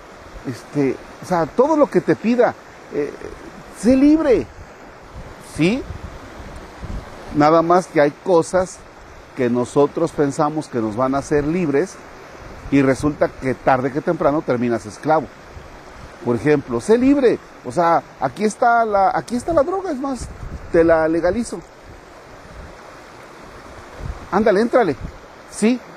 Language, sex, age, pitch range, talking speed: Spanish, male, 40-59, 125-180 Hz, 125 wpm